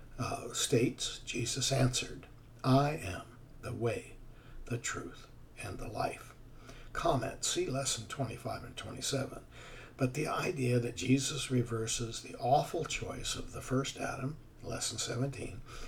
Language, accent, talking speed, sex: English, American, 130 wpm, male